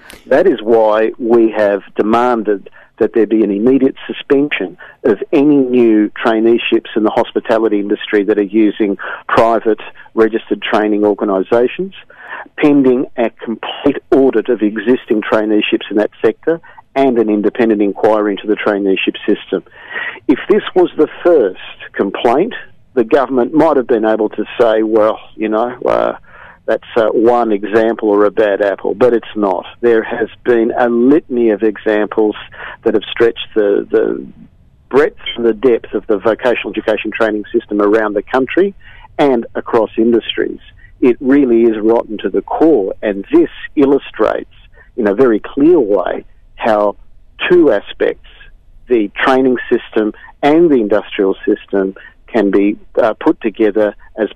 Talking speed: 145 wpm